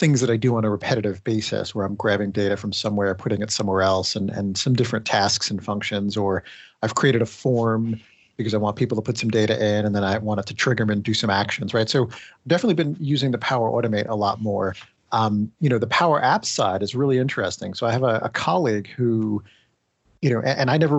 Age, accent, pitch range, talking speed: 40-59, American, 105-125 Hz, 245 wpm